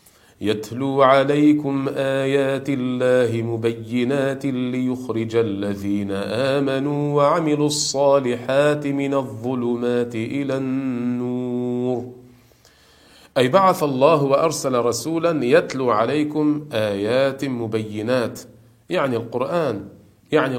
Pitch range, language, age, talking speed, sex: 105-135 Hz, Arabic, 40-59, 75 wpm, male